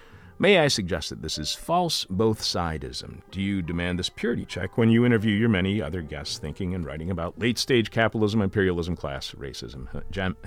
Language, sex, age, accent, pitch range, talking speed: English, male, 50-69, American, 75-110 Hz, 190 wpm